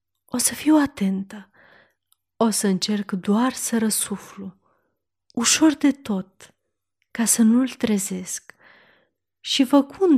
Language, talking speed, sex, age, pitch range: Romanian, 110 wpm, female, 30-49, 190-255 Hz